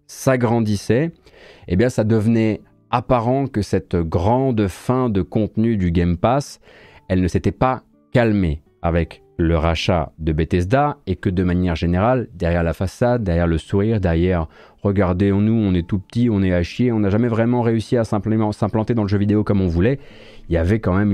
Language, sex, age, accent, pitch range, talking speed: French, male, 30-49, French, 90-115 Hz, 195 wpm